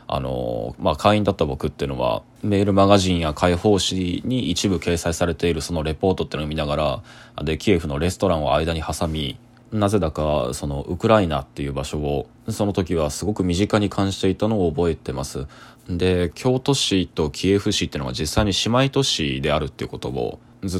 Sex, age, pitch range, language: male, 20-39, 75-95 Hz, Japanese